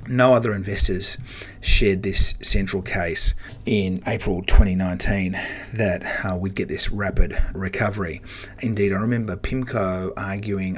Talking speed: 120 wpm